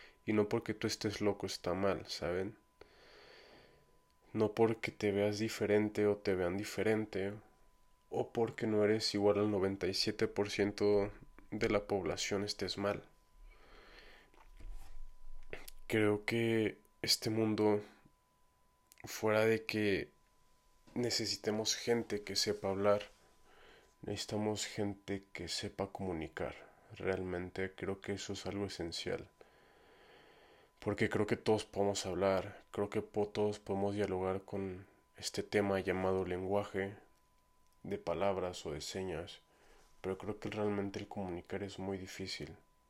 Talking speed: 120 wpm